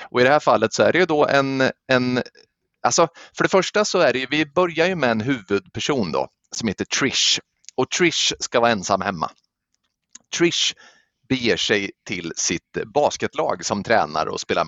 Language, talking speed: Swedish, 180 wpm